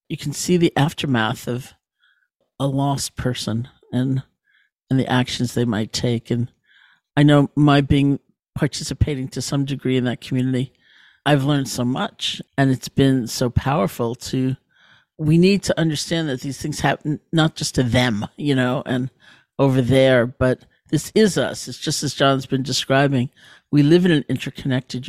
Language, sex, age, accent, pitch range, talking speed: English, male, 50-69, American, 125-150 Hz, 165 wpm